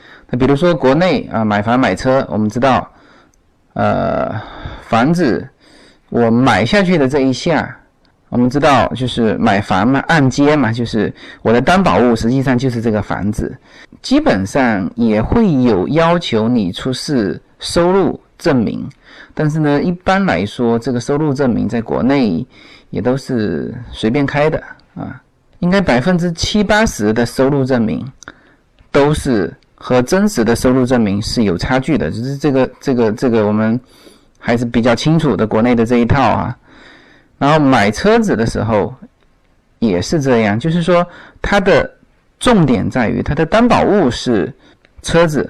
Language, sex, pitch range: Chinese, male, 115-165 Hz